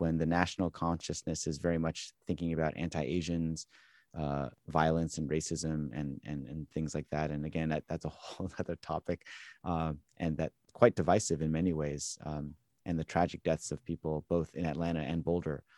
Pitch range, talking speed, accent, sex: 75-90 Hz, 185 wpm, American, male